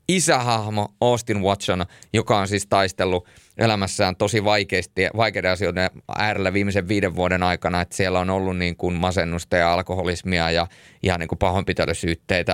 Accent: native